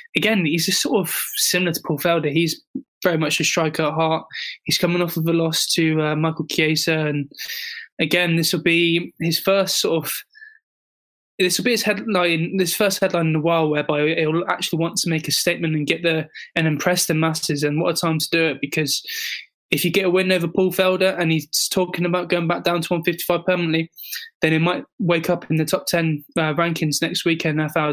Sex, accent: male, British